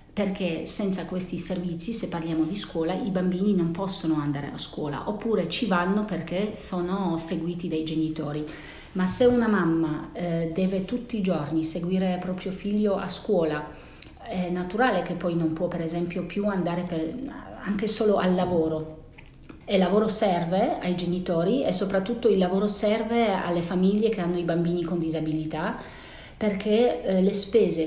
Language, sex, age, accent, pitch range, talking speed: Italian, female, 40-59, native, 160-195 Hz, 155 wpm